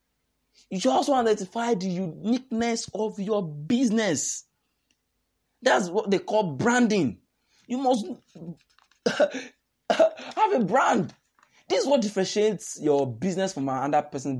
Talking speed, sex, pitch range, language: 115 wpm, male, 135-220 Hz, English